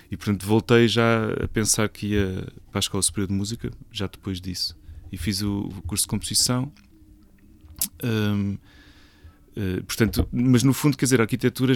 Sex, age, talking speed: male, 30-49, 170 wpm